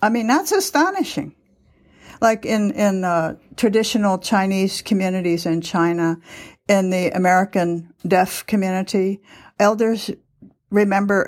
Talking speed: 105 wpm